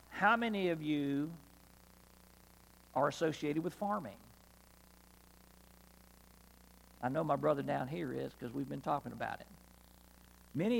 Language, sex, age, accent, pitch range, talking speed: English, male, 50-69, American, 125-150 Hz, 120 wpm